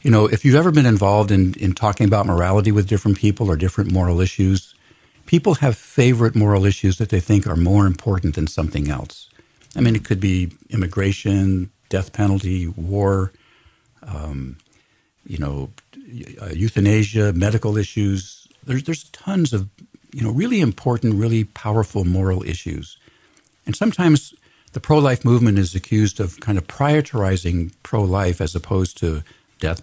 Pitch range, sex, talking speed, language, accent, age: 95-120 Hz, male, 155 wpm, English, American, 50-69